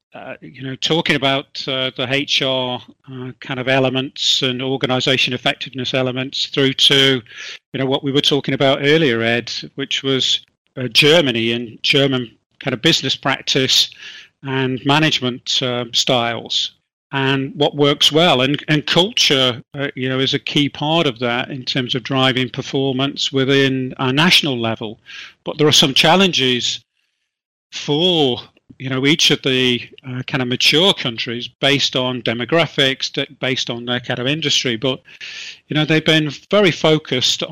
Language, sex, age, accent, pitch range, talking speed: English, male, 40-59, British, 130-145 Hz, 155 wpm